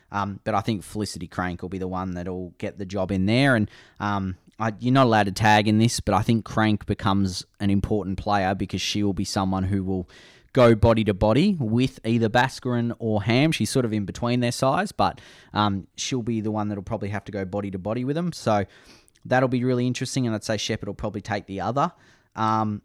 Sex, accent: male, Australian